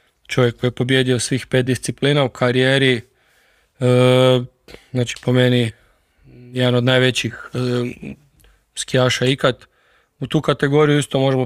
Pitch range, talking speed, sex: 125-135 Hz, 115 wpm, male